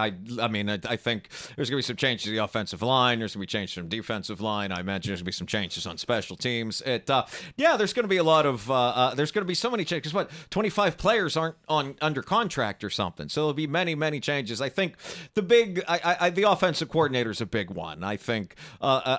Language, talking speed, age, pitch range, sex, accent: English, 270 wpm, 40-59, 110-155 Hz, male, American